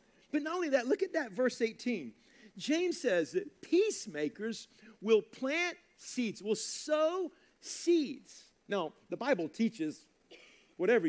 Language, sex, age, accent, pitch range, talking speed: English, male, 50-69, American, 215-300 Hz, 130 wpm